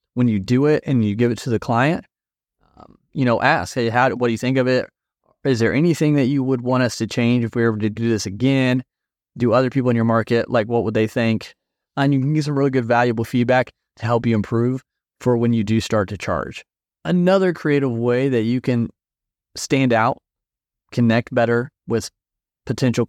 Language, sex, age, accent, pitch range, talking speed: English, male, 30-49, American, 110-130 Hz, 220 wpm